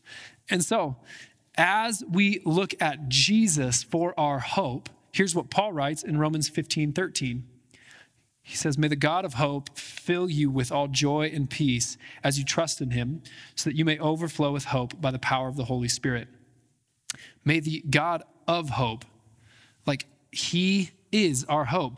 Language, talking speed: English, 165 wpm